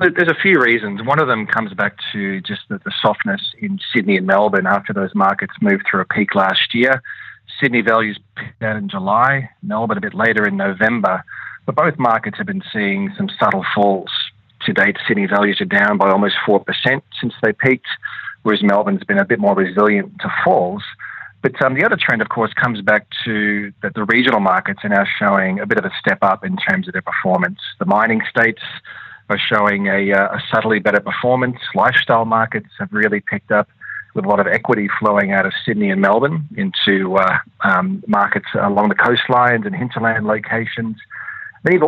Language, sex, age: English, male, 40-59